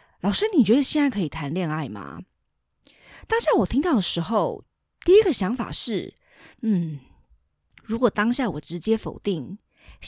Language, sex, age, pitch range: Chinese, female, 20-39, 185-260 Hz